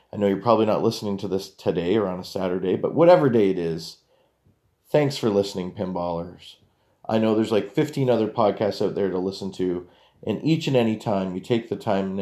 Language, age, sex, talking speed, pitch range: English, 40-59, male, 215 wpm, 95-120 Hz